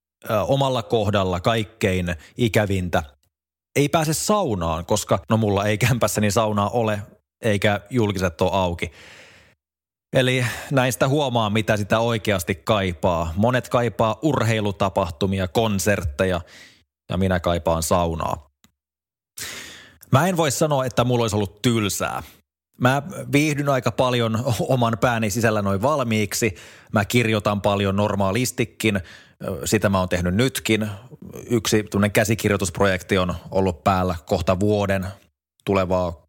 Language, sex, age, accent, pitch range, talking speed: Finnish, male, 20-39, native, 95-120 Hz, 115 wpm